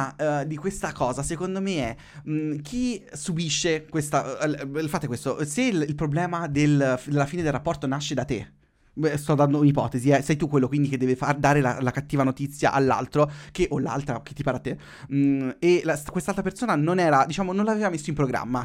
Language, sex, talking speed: Italian, male, 185 wpm